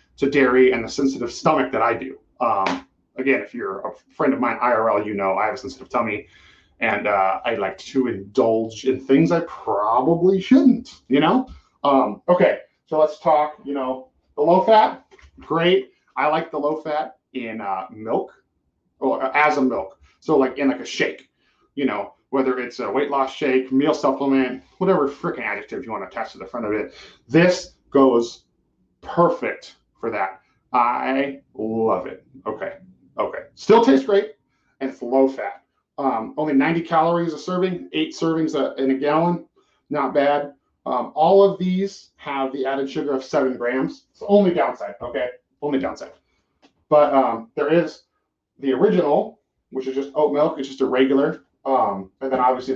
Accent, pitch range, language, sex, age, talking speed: American, 130-170 Hz, English, male, 40-59, 175 wpm